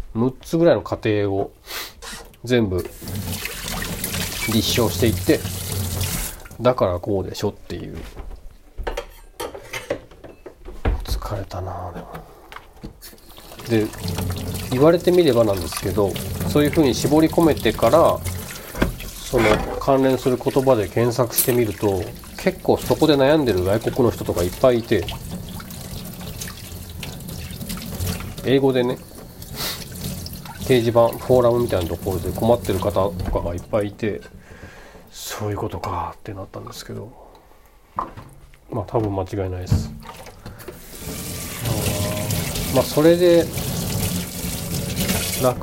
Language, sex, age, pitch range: Japanese, male, 40-59, 95-125 Hz